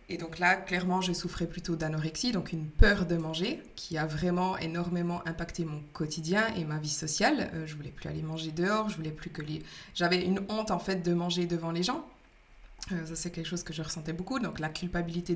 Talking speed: 225 wpm